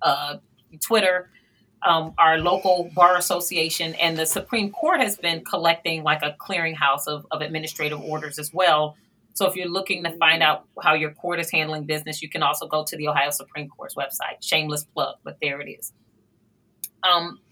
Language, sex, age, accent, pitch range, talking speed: English, female, 30-49, American, 155-195 Hz, 180 wpm